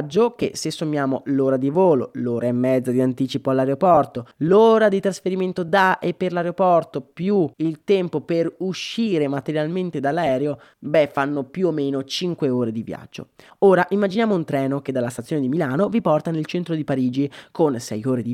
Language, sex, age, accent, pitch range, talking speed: Italian, male, 20-39, native, 130-180 Hz, 175 wpm